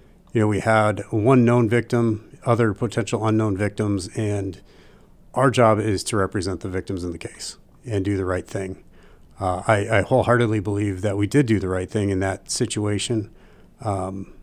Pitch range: 100-115 Hz